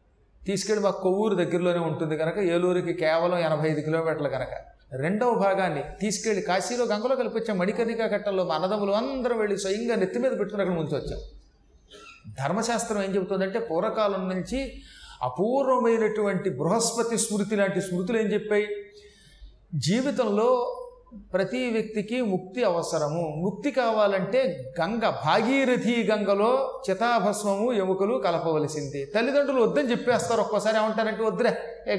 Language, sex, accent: Telugu, male, native